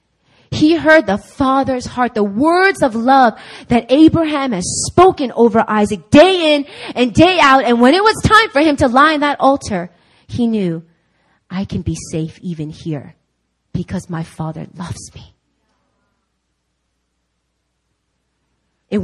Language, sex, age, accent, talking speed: English, female, 30-49, American, 145 wpm